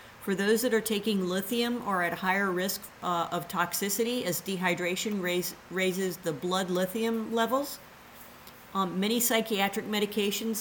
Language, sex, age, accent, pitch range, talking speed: English, female, 50-69, American, 180-225 Hz, 140 wpm